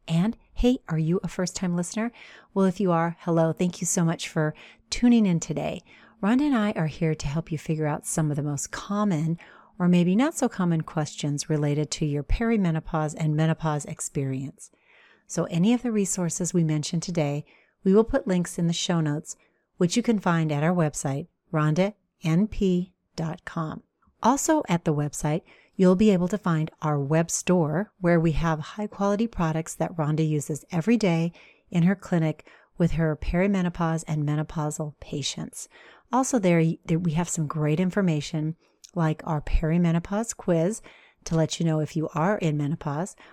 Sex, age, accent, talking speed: female, 40-59, American, 175 wpm